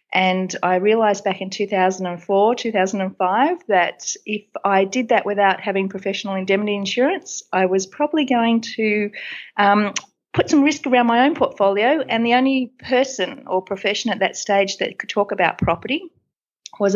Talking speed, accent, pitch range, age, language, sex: 160 wpm, Australian, 185-215 Hz, 40-59, English, female